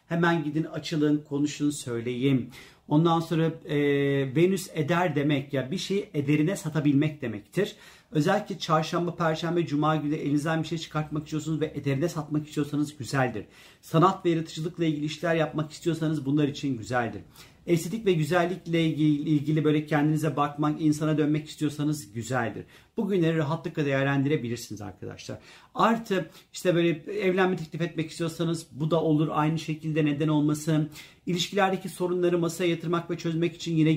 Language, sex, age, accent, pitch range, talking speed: Turkish, male, 50-69, native, 140-170 Hz, 140 wpm